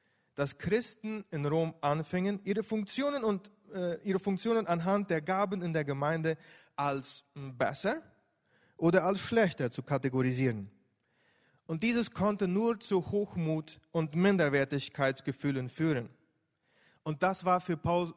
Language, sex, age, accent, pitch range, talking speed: Spanish, male, 30-49, German, 140-195 Hz, 125 wpm